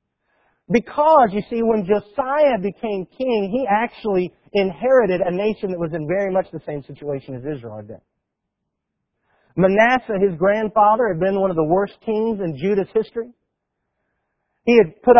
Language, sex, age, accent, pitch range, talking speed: English, male, 40-59, American, 150-215 Hz, 155 wpm